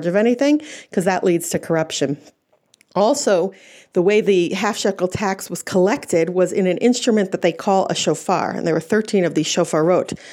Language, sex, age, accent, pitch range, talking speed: English, female, 40-59, American, 170-210 Hz, 180 wpm